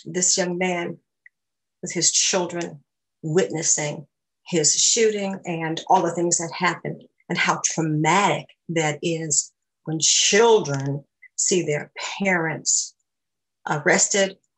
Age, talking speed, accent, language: 50-69, 105 wpm, American, English